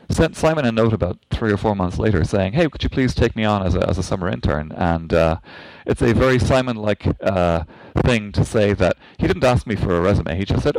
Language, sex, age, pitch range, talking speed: English, male, 30-49, 85-110 Hz, 250 wpm